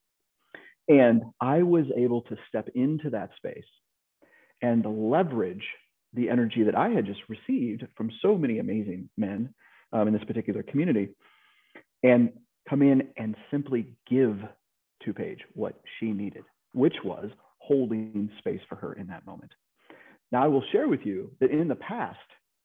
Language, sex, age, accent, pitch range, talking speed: English, male, 40-59, American, 115-160 Hz, 155 wpm